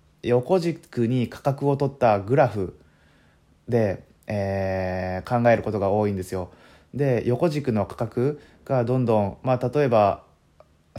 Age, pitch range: 20-39, 95-125 Hz